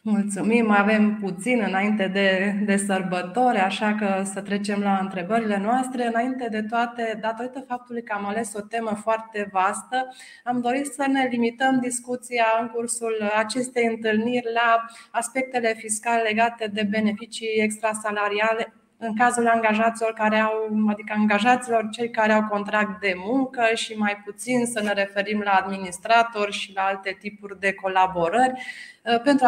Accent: native